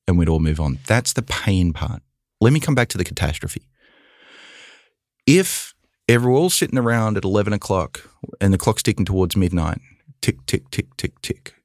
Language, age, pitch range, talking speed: English, 30-49, 90-115 Hz, 180 wpm